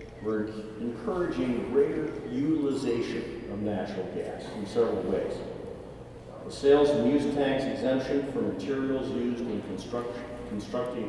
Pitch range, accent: 105-130 Hz, American